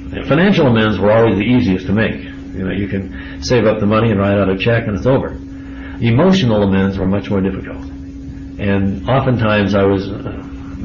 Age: 60-79